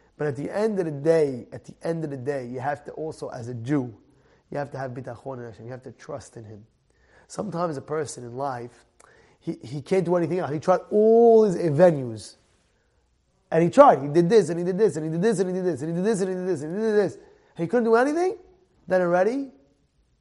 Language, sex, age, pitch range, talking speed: English, male, 30-49, 120-185 Hz, 250 wpm